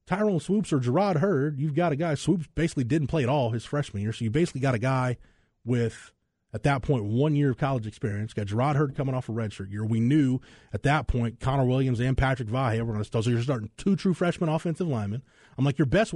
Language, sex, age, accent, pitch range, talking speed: English, male, 30-49, American, 120-170 Hz, 255 wpm